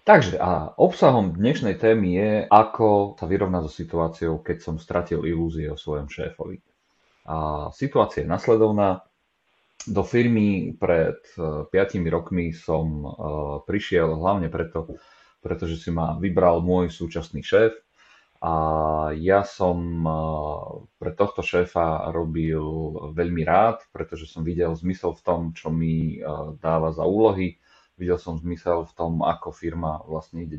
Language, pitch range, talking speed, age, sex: Slovak, 80-95 Hz, 130 wpm, 30-49, male